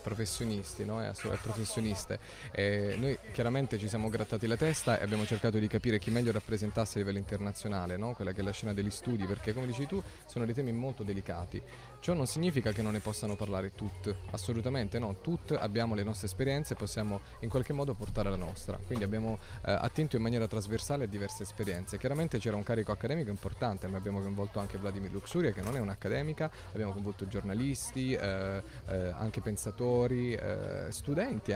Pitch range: 100-125 Hz